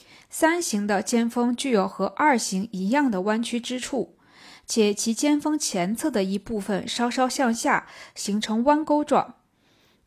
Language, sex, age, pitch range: Chinese, female, 20-39, 210-280 Hz